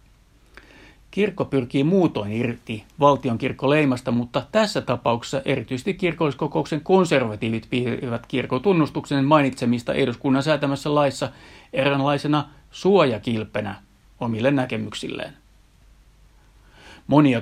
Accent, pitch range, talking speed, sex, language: native, 115-140 Hz, 75 wpm, male, Finnish